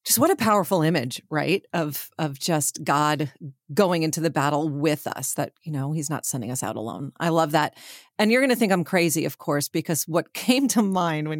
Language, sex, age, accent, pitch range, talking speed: English, female, 40-59, American, 155-200 Hz, 225 wpm